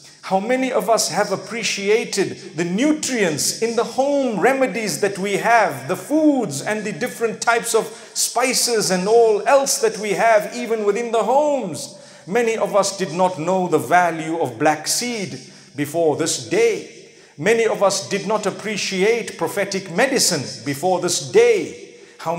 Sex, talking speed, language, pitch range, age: male, 160 wpm, English, 165-225 Hz, 50-69